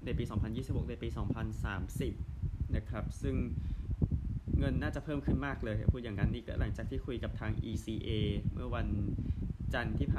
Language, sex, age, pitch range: Thai, male, 20-39, 100-120 Hz